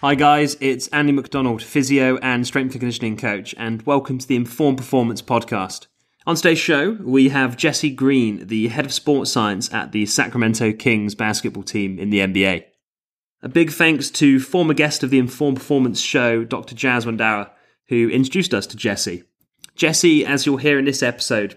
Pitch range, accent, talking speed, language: 115-140 Hz, British, 180 wpm, English